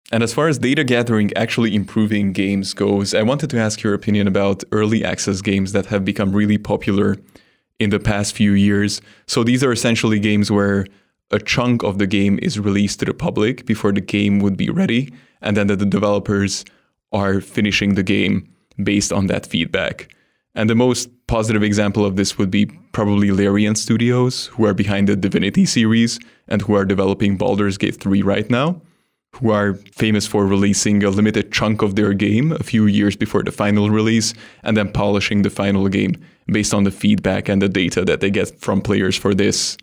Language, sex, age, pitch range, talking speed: English, male, 20-39, 100-110 Hz, 195 wpm